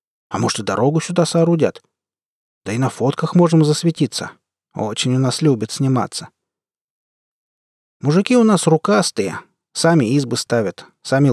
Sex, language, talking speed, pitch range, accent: male, Russian, 130 wpm, 120-160 Hz, native